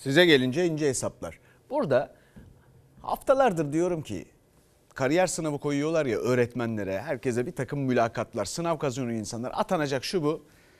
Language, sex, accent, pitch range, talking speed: Turkish, male, native, 115-165 Hz, 130 wpm